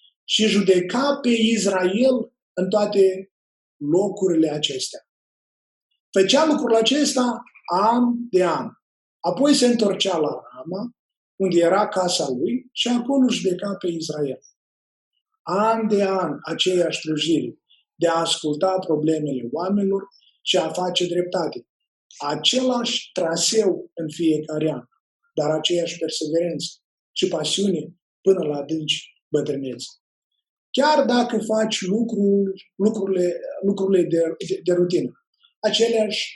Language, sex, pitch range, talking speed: Romanian, male, 175-235 Hz, 110 wpm